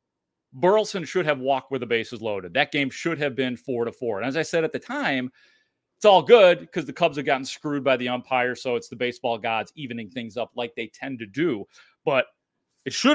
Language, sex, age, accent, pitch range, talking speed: English, male, 30-49, American, 125-175 Hz, 235 wpm